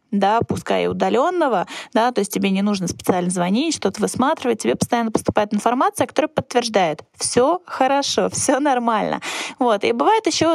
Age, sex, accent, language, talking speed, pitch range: 20-39, female, native, Russian, 155 wpm, 205-265 Hz